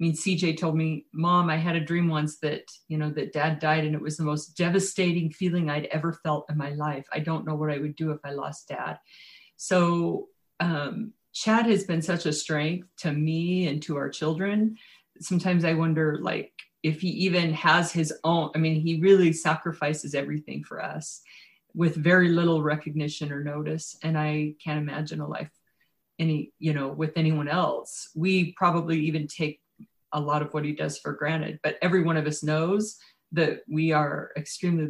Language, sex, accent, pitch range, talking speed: English, female, American, 150-175 Hz, 195 wpm